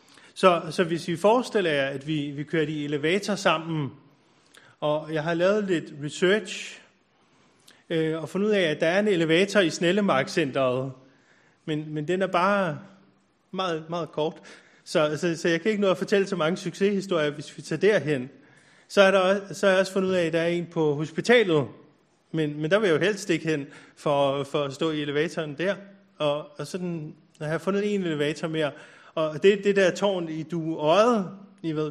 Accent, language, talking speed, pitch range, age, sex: native, Danish, 185 wpm, 150-190 Hz, 30-49, male